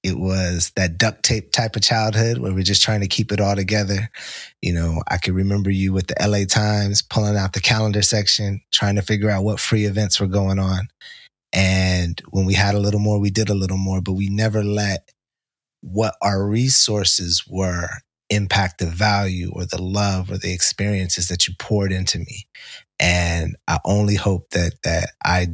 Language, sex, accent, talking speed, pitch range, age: English, male, American, 195 wpm, 90-105 Hz, 30-49